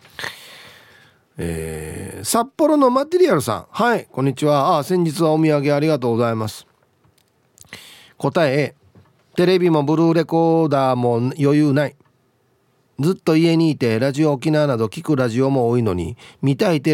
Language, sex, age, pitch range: Japanese, male, 40-59, 125-160 Hz